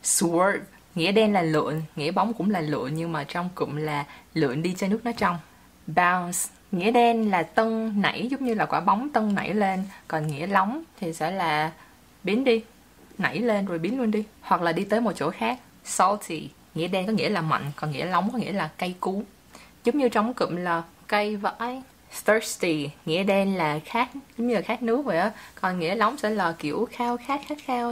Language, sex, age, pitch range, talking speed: English, female, 20-39, 165-225 Hz, 215 wpm